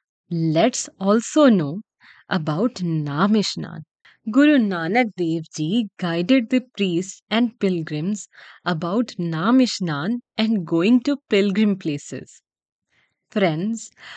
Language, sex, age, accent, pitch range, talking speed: English, female, 20-39, Indian, 175-235 Hz, 95 wpm